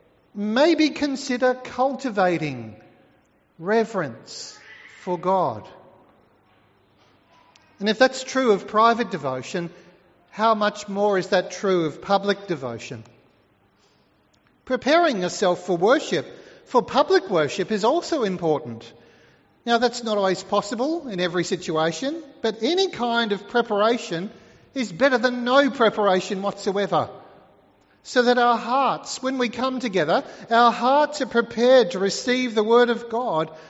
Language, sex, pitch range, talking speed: English, male, 195-250 Hz, 125 wpm